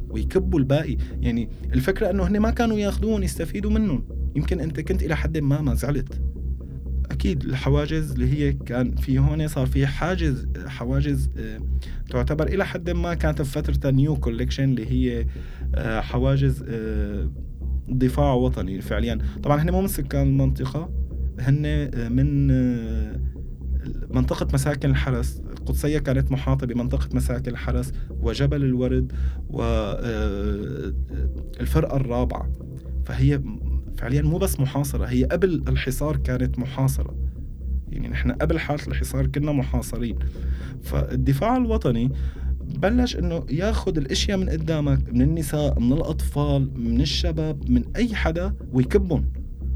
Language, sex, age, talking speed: Arabic, male, 20-39, 120 wpm